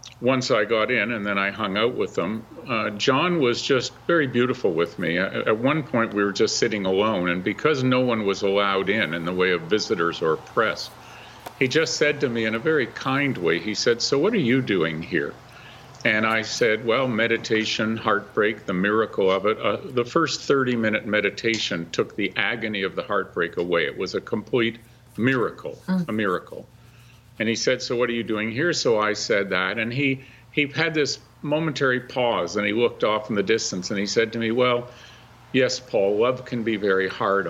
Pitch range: 105-130 Hz